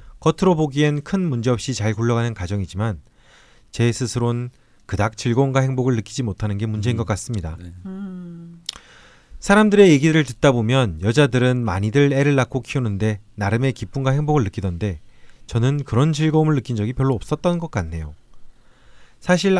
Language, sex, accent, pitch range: Korean, male, native, 110-145 Hz